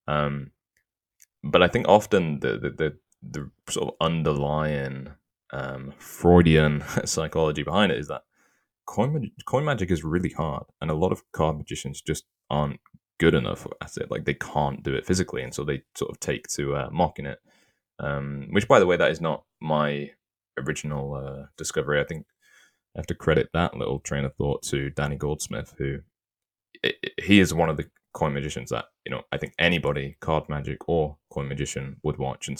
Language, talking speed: English, 190 wpm